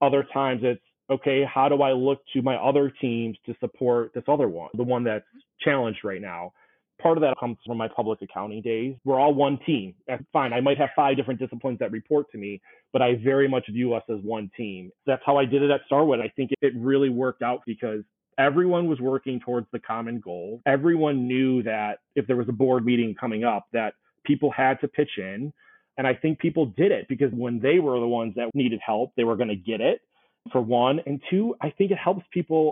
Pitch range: 120-145 Hz